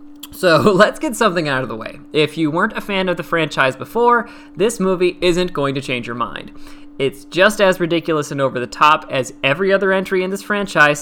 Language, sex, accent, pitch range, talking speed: English, male, American, 145-205 Hz, 220 wpm